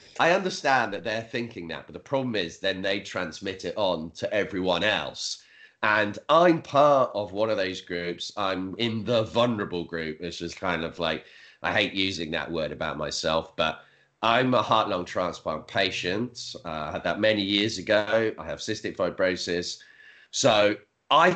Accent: British